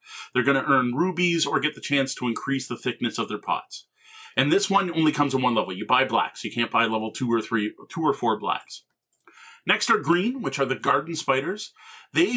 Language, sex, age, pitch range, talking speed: English, male, 40-59, 135-200 Hz, 230 wpm